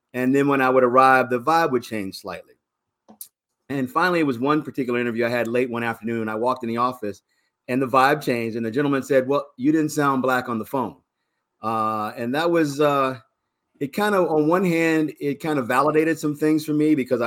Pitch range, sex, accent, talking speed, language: 115-135 Hz, male, American, 220 wpm, English